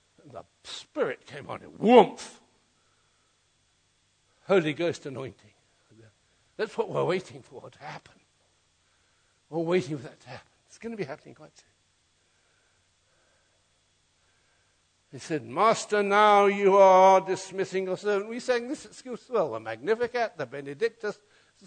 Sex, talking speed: male, 135 wpm